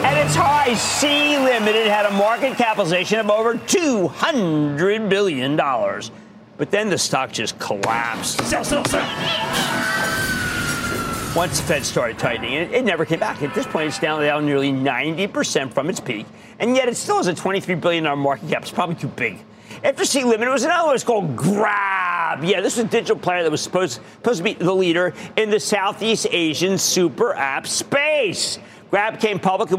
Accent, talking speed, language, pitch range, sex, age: American, 175 wpm, English, 160-225 Hz, male, 50-69